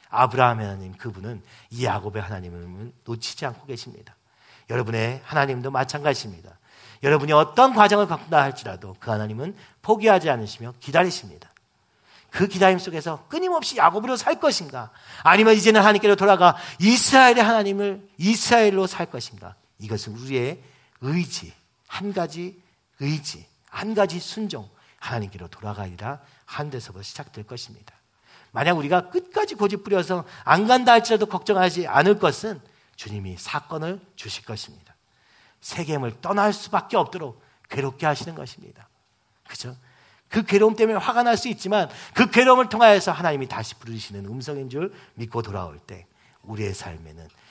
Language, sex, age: Korean, male, 40-59